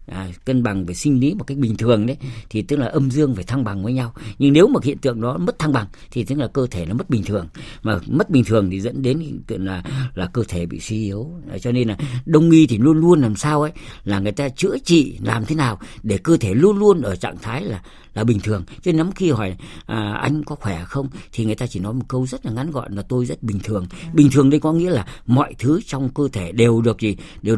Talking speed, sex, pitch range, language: 270 wpm, female, 105-140 Hz, Vietnamese